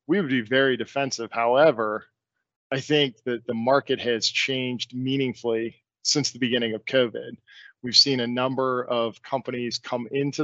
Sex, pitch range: male, 115-135 Hz